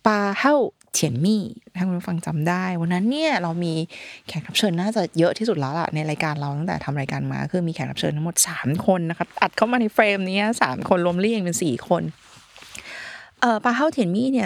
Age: 20-39